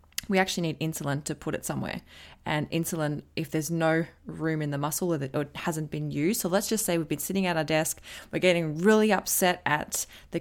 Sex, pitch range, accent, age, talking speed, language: female, 155-180 Hz, Australian, 20-39, 220 wpm, English